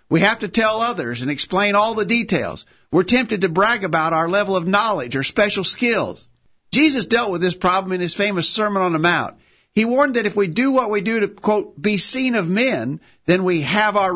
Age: 50-69